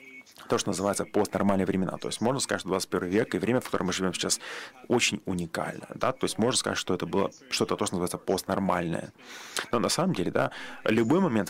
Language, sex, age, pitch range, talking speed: Russian, male, 30-49, 95-120 Hz, 215 wpm